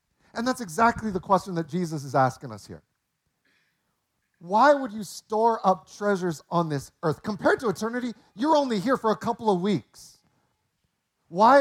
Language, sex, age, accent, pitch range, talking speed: English, male, 40-59, American, 155-210 Hz, 165 wpm